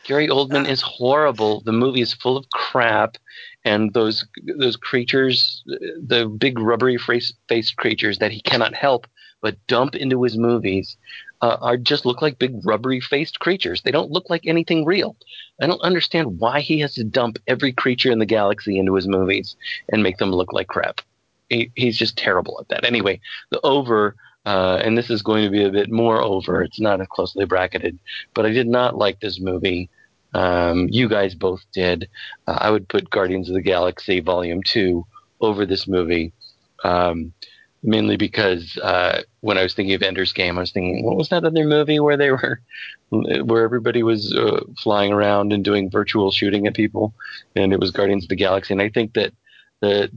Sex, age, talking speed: male, 40-59, 195 wpm